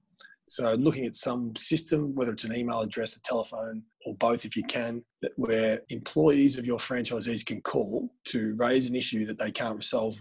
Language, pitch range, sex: English, 110-145 Hz, male